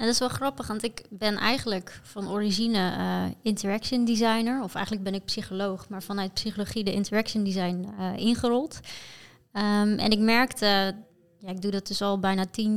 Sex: female